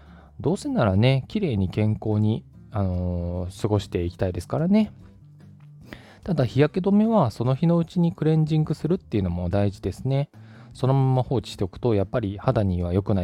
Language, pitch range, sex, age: Japanese, 95-150 Hz, male, 20-39